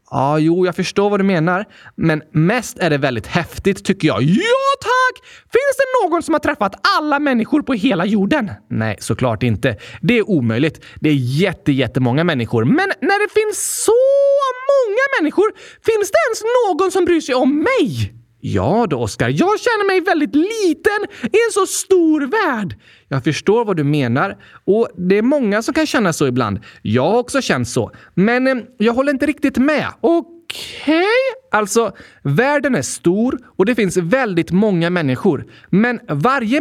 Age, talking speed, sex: 20-39, 180 wpm, male